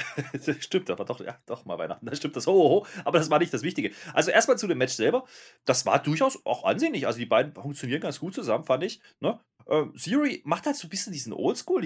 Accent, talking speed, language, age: German, 250 wpm, German, 30-49